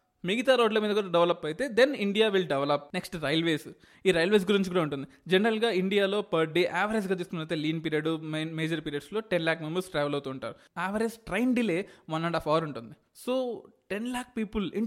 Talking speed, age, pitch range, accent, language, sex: 190 wpm, 20-39, 165-215 Hz, native, Telugu, male